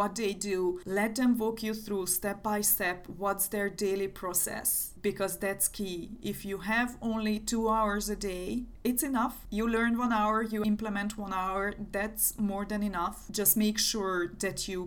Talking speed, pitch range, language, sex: 180 wpm, 190-220 Hz, English, female